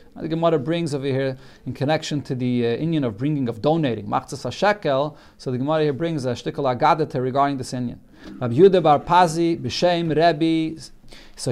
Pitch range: 140-185 Hz